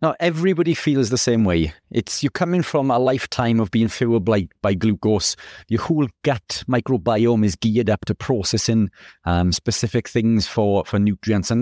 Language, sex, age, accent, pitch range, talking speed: English, male, 40-59, British, 105-130 Hz, 175 wpm